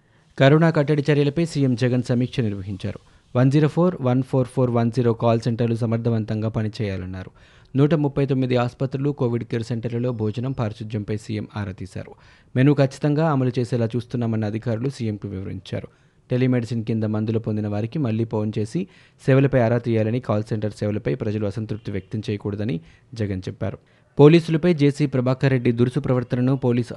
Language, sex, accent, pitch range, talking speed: Telugu, male, native, 110-130 Hz, 145 wpm